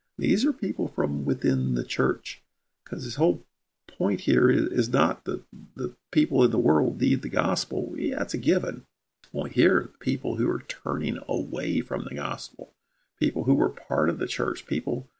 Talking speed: 185 wpm